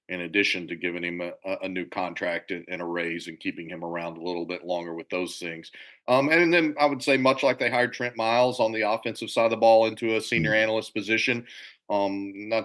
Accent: American